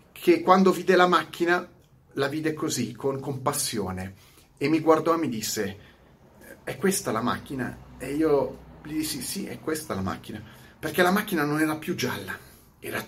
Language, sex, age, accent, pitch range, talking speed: Italian, male, 30-49, native, 115-145 Hz, 175 wpm